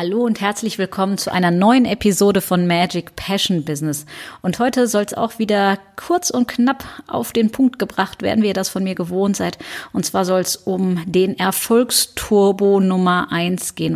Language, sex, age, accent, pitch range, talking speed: German, female, 30-49, German, 180-225 Hz, 185 wpm